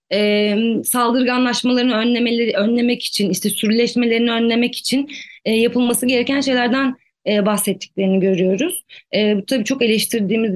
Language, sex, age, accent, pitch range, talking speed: Turkish, female, 30-49, native, 205-250 Hz, 120 wpm